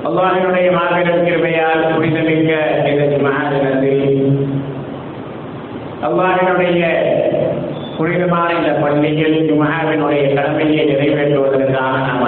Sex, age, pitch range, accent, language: male, 50-69, 145-185 Hz, native, Tamil